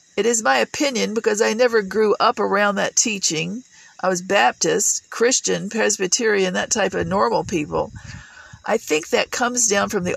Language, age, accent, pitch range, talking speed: English, 50-69, American, 195-225 Hz, 170 wpm